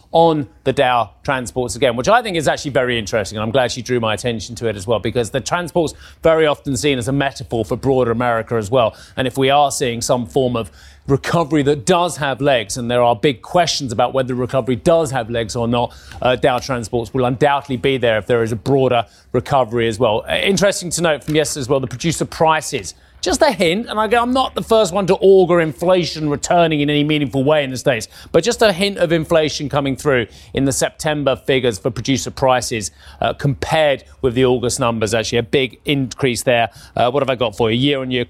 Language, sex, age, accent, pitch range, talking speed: English, male, 30-49, British, 120-155 Hz, 225 wpm